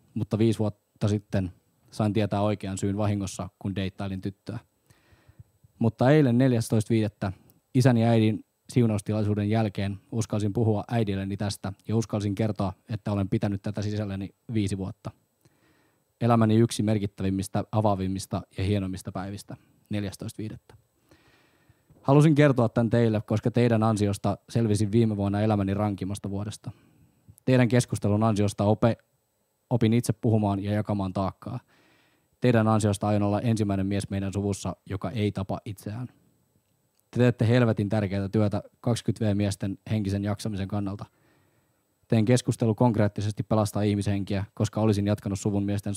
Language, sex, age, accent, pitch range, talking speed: Finnish, male, 20-39, native, 100-115 Hz, 125 wpm